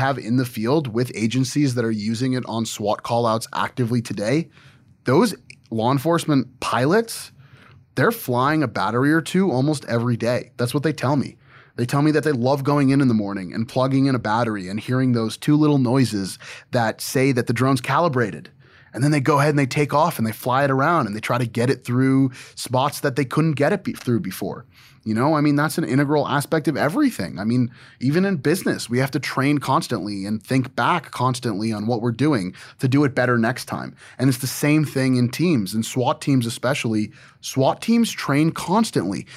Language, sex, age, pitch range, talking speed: English, male, 20-39, 115-145 Hz, 210 wpm